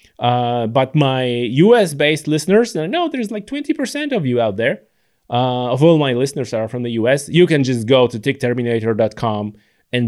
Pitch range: 120-150 Hz